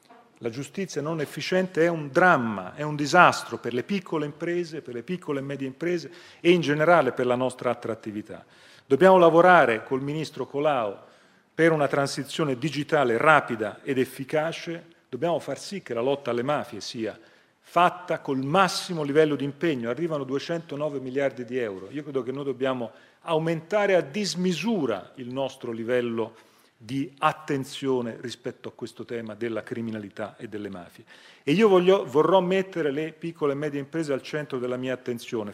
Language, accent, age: Italian, native, 40-59